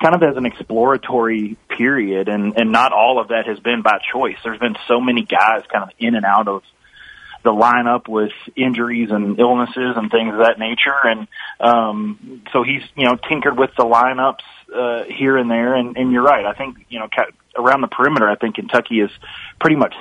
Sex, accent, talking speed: male, American, 205 wpm